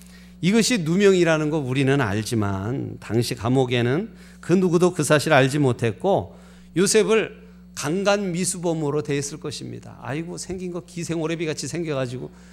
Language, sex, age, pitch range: Korean, male, 40-59, 130-190 Hz